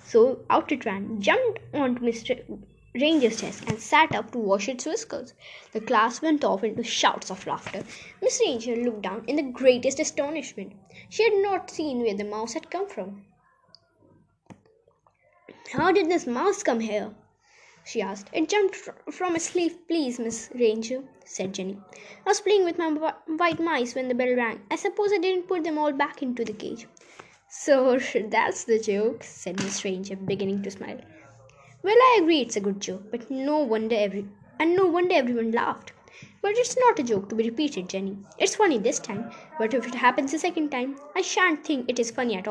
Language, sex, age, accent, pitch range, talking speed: Hindi, female, 20-39, native, 220-335 Hz, 190 wpm